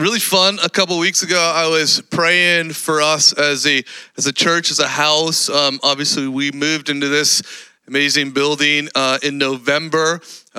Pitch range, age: 140-170 Hz, 30-49